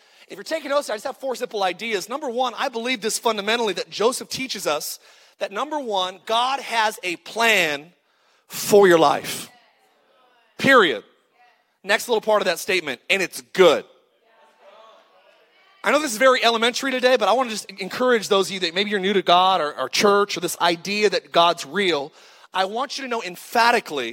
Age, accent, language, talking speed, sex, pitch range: 30-49, American, English, 190 wpm, male, 195-260 Hz